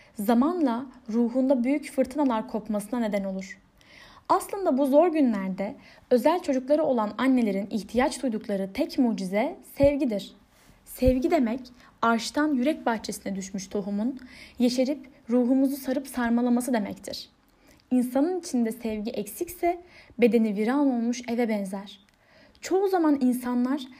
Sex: female